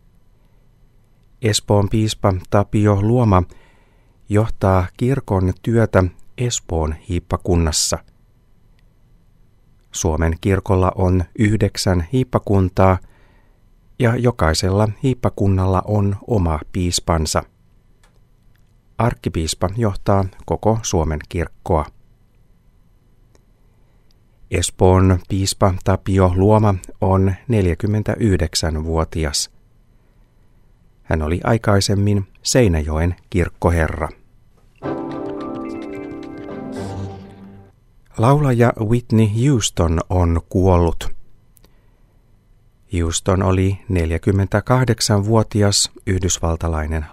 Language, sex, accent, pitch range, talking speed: Finnish, male, native, 90-115 Hz, 55 wpm